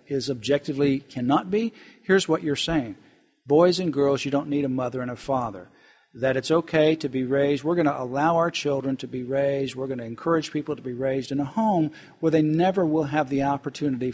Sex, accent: male, American